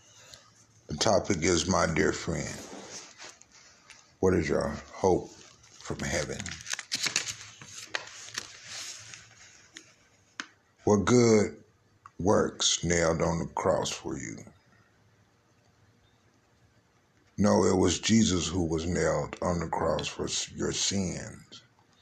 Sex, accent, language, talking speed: male, American, English, 90 wpm